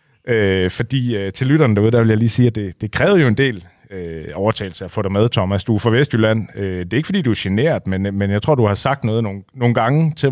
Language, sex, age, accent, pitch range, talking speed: Danish, male, 30-49, native, 95-130 Hz, 285 wpm